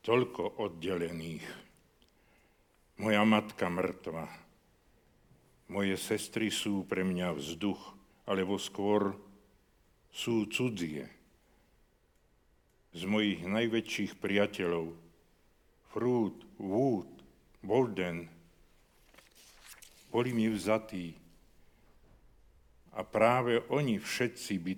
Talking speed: 75 wpm